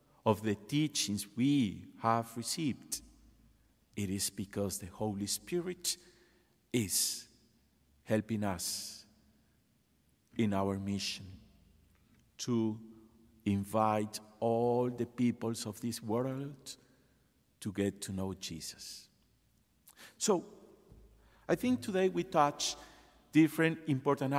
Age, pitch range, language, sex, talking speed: 50-69, 100-140 Hz, English, male, 95 wpm